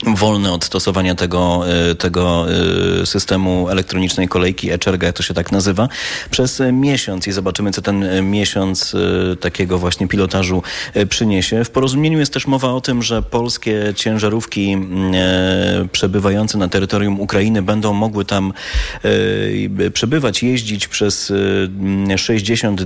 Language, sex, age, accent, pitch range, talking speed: Polish, male, 30-49, native, 95-110 Hz, 120 wpm